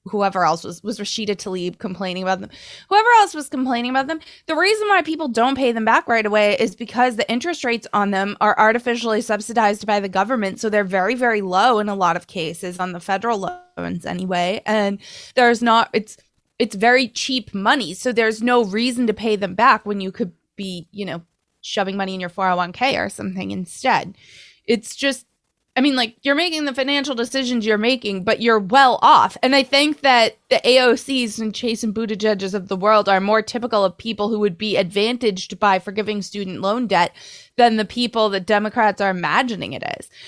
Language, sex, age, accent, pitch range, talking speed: English, female, 20-39, American, 200-245 Hz, 200 wpm